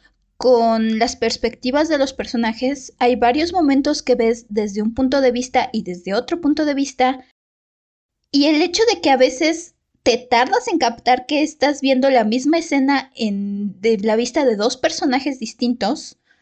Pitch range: 235-290 Hz